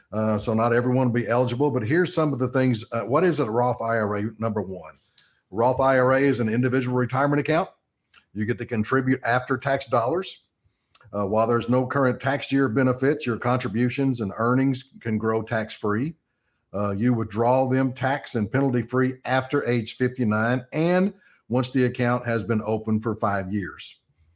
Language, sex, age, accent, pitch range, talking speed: English, male, 50-69, American, 110-130 Hz, 170 wpm